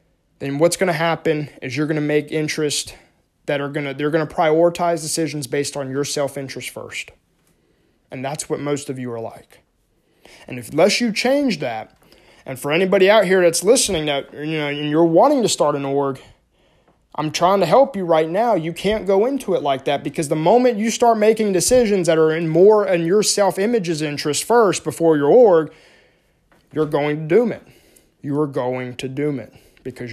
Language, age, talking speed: English, 20-39, 200 wpm